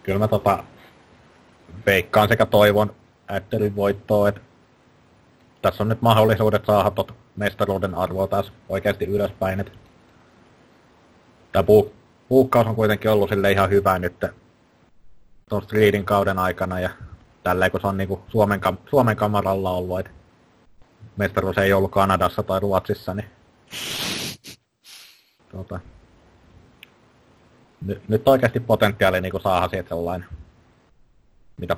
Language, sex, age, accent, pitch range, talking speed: English, male, 30-49, Finnish, 95-105 Hz, 115 wpm